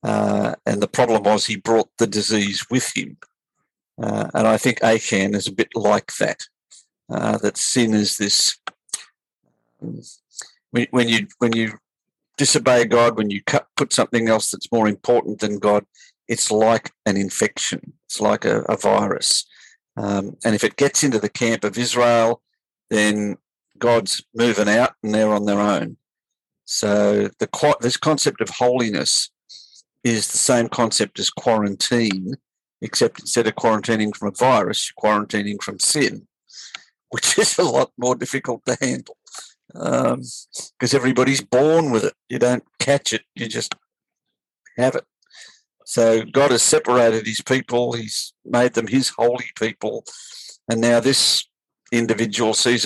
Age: 50-69